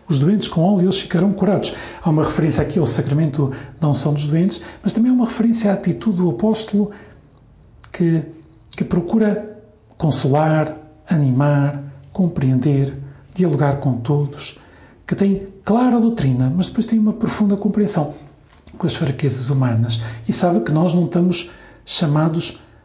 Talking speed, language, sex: 145 wpm, Portuguese, male